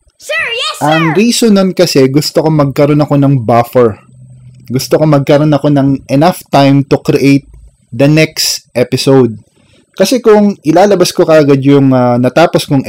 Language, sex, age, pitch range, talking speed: English, male, 20-39, 130-165 Hz, 155 wpm